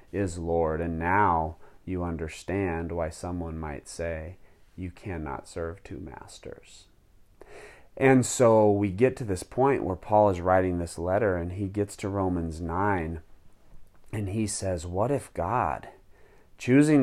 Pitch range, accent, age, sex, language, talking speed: 90-115 Hz, American, 30-49, male, English, 145 wpm